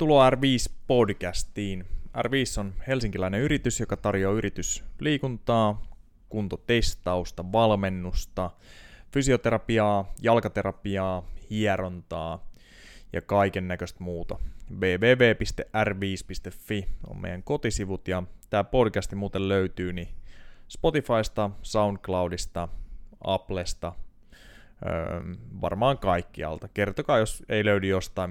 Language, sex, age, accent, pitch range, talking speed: Finnish, male, 20-39, native, 90-110 Hz, 80 wpm